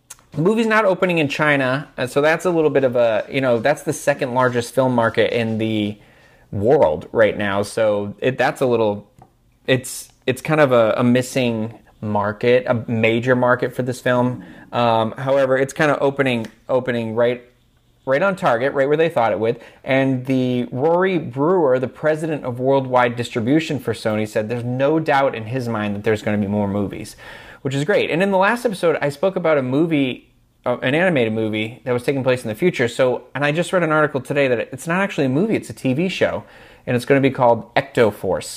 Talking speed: 210 wpm